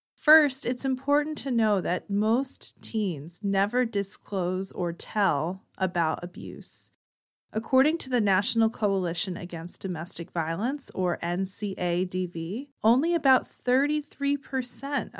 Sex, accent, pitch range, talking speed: female, American, 190-235 Hz, 105 wpm